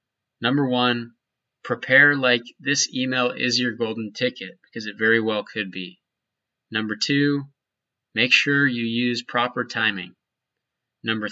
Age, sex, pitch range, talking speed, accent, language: 20-39, male, 105-135 Hz, 135 wpm, American, English